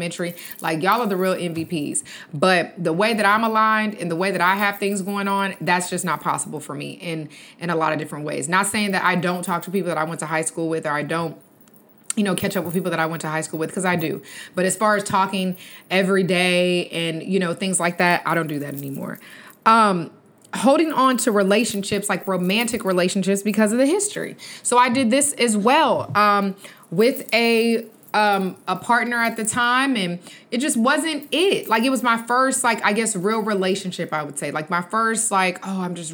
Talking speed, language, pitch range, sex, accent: 230 wpm, English, 175-225 Hz, female, American